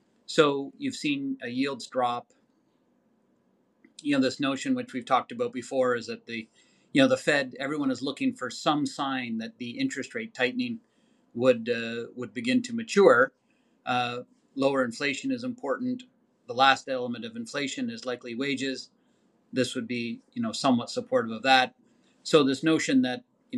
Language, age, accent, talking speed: English, 30-49, American, 170 wpm